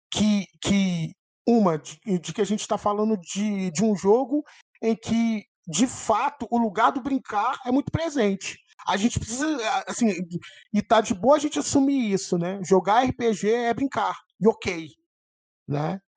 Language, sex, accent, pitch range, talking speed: Portuguese, male, Brazilian, 175-225 Hz, 165 wpm